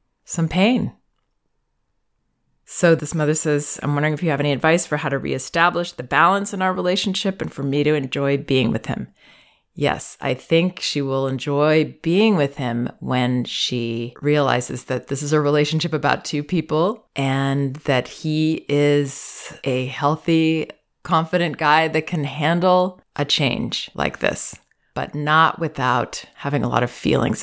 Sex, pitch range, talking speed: female, 135-160 Hz, 160 wpm